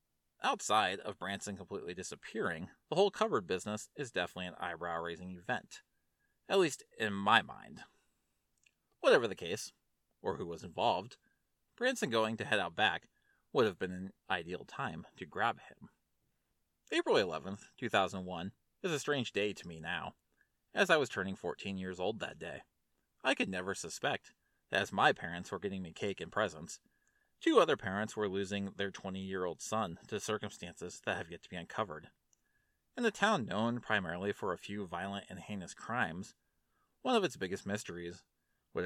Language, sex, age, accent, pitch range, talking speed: English, male, 30-49, American, 90-110 Hz, 170 wpm